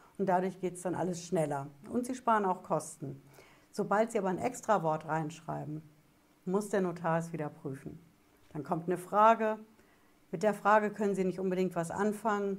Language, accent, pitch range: German, German, 160-210 Hz